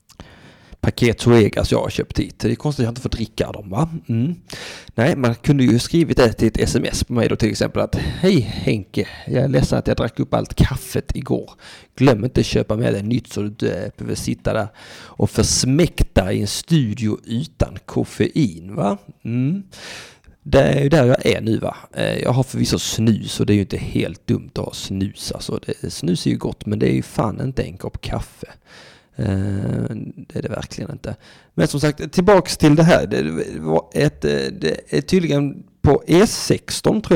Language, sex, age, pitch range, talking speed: Swedish, male, 30-49, 100-150 Hz, 200 wpm